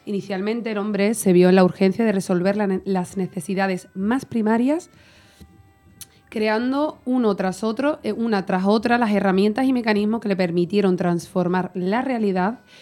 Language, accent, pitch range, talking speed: Spanish, Spanish, 180-225 Hz, 145 wpm